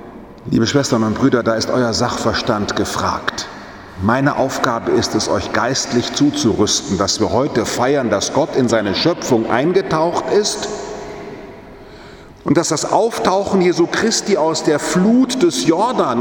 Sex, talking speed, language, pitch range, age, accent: male, 140 wpm, German, 155-230 Hz, 40-59, German